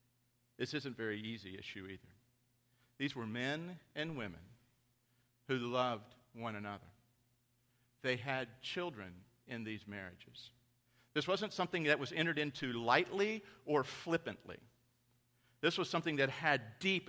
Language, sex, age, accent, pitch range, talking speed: English, male, 50-69, American, 120-140 Hz, 135 wpm